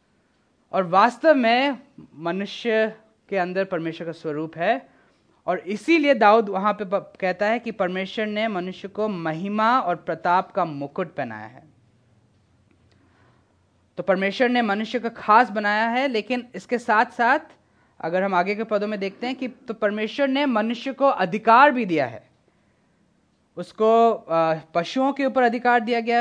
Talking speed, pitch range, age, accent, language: 150 wpm, 175-235 Hz, 20-39, native, Hindi